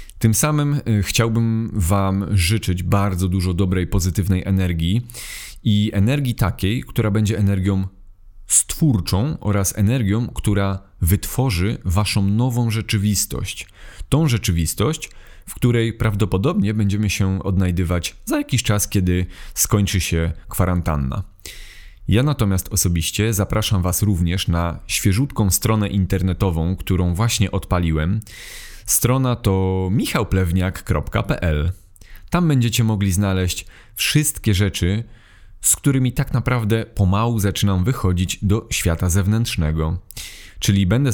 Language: Polish